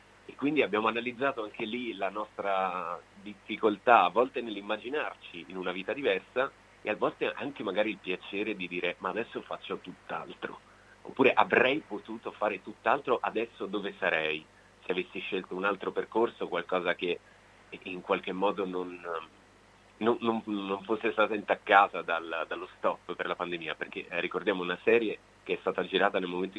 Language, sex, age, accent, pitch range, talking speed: Italian, male, 30-49, native, 90-115 Hz, 160 wpm